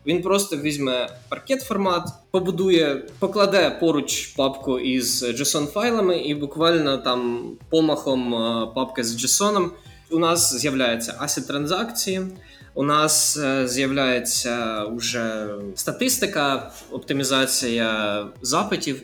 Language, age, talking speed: Ukrainian, 20-39, 90 wpm